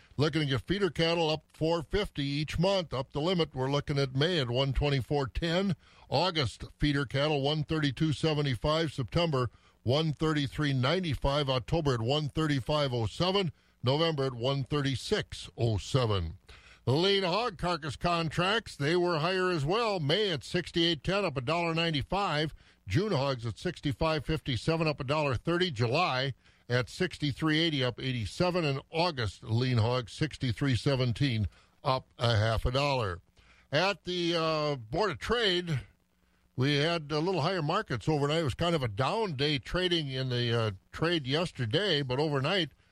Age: 50-69